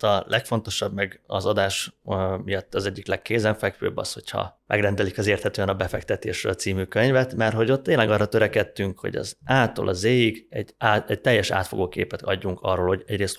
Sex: male